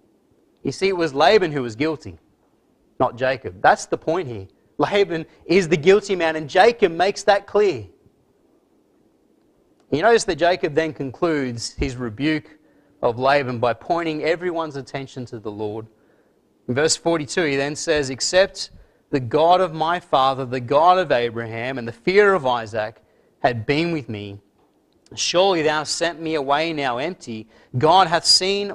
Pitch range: 130-180 Hz